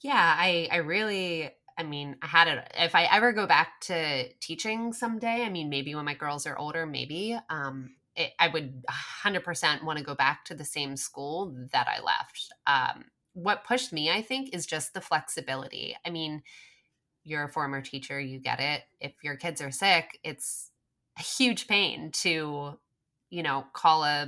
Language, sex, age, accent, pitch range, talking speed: English, female, 20-39, American, 140-175 Hz, 185 wpm